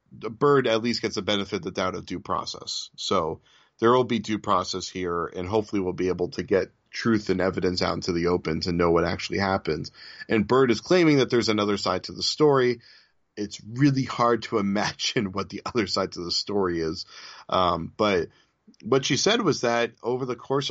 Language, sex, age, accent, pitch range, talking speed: English, male, 40-59, American, 95-115 Hz, 210 wpm